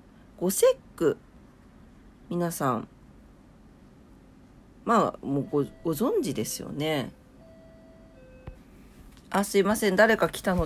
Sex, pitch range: female, 160-225 Hz